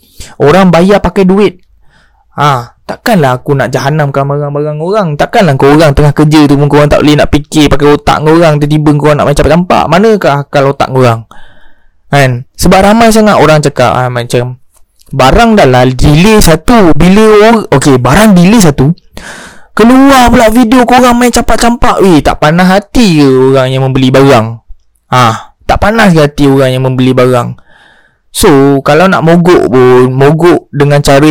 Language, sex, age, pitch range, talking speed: Malay, male, 20-39, 135-200 Hz, 170 wpm